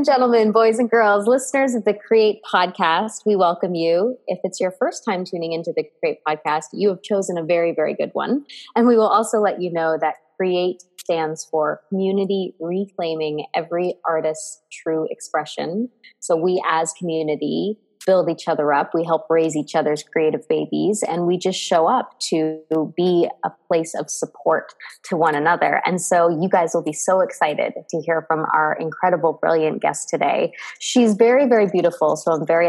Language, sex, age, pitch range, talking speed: English, female, 20-39, 170-235 Hz, 180 wpm